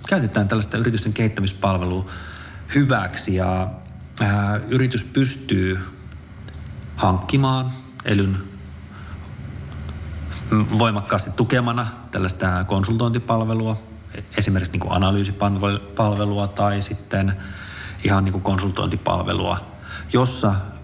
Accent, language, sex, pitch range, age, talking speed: native, Finnish, male, 95-110 Hz, 30-49, 60 wpm